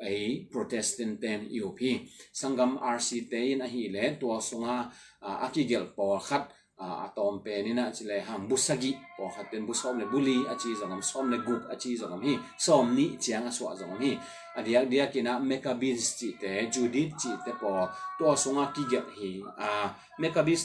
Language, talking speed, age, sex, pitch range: English, 165 wpm, 30-49, male, 110-135 Hz